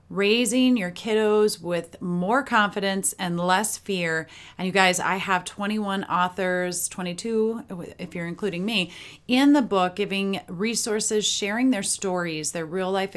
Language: English